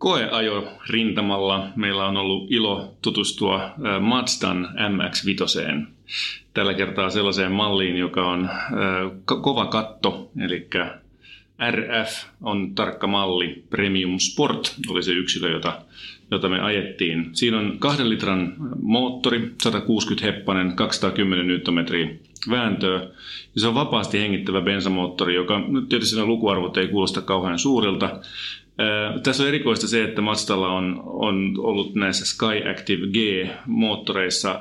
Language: Finnish